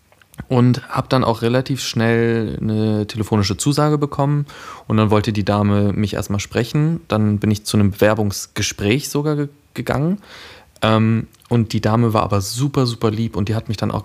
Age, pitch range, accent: 20-39, 100-115 Hz, German